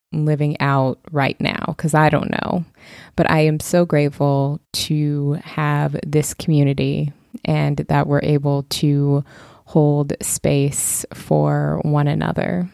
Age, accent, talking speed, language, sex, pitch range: 20-39, American, 125 wpm, English, female, 150-170 Hz